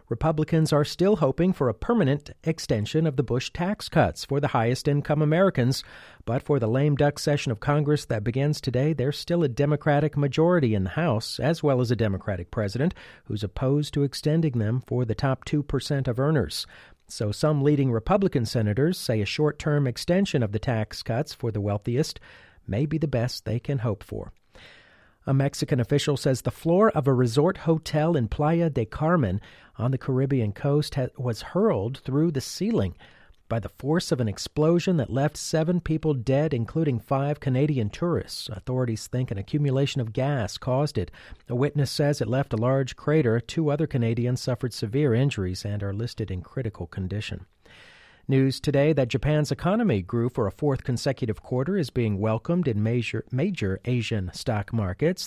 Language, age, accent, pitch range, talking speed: English, 40-59, American, 115-150 Hz, 175 wpm